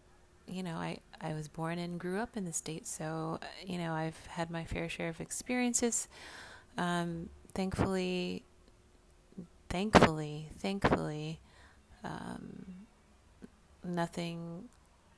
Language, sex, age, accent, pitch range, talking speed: English, female, 30-49, American, 135-170 Hz, 110 wpm